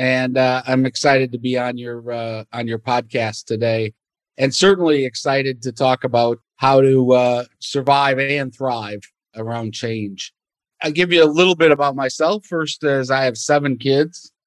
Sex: male